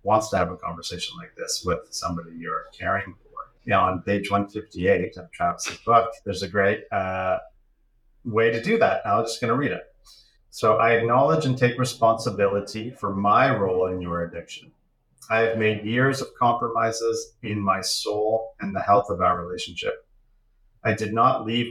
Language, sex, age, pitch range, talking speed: English, male, 30-49, 95-115 Hz, 180 wpm